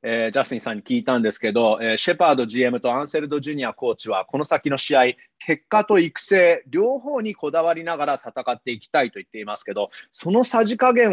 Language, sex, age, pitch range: Japanese, male, 30-49, 140-220 Hz